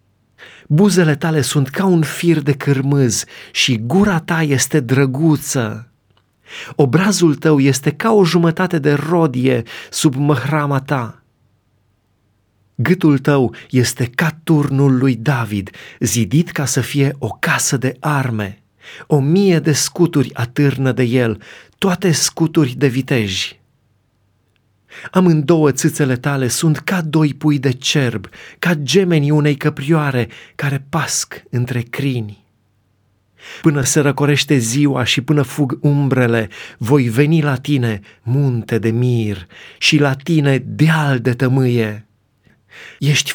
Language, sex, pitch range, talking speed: Romanian, male, 120-155 Hz, 125 wpm